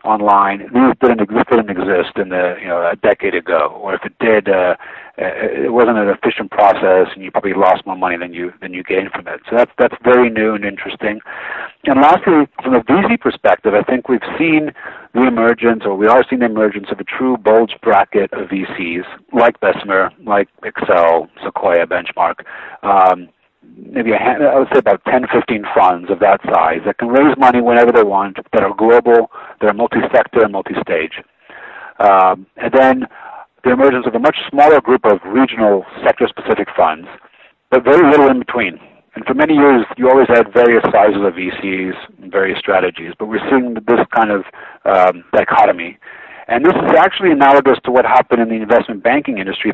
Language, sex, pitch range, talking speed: English, male, 95-125 Hz, 190 wpm